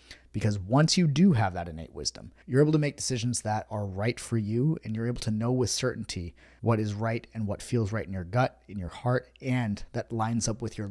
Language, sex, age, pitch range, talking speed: English, male, 30-49, 100-125 Hz, 240 wpm